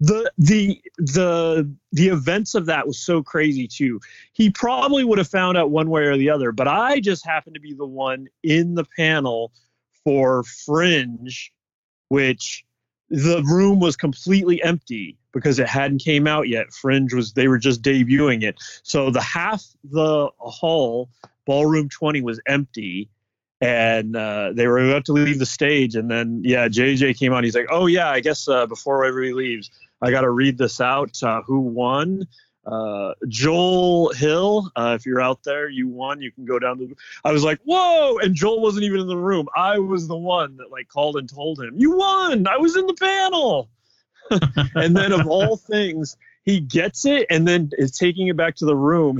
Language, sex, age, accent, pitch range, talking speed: English, male, 30-49, American, 125-175 Hz, 190 wpm